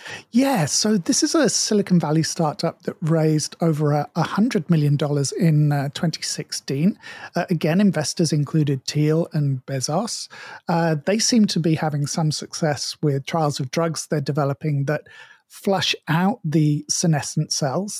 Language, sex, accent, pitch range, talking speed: English, male, British, 150-185 Hz, 145 wpm